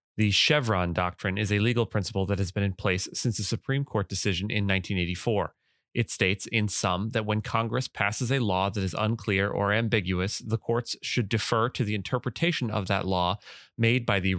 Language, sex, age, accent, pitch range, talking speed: English, male, 30-49, American, 100-115 Hz, 195 wpm